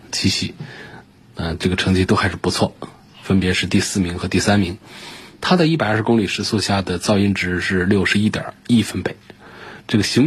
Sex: male